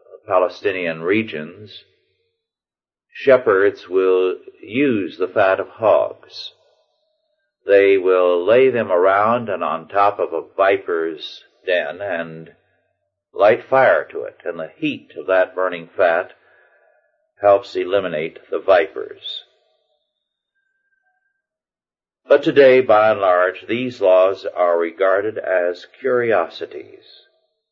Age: 50-69